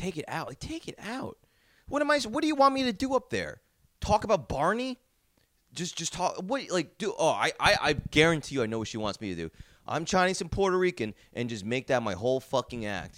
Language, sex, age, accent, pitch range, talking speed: English, male, 30-49, American, 120-180 Hz, 245 wpm